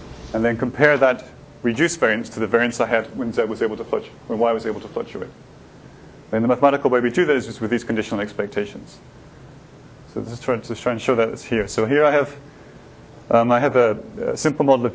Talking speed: 225 wpm